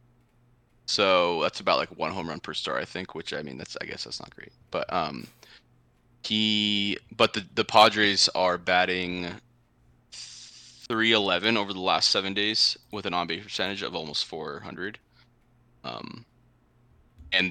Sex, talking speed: male, 155 wpm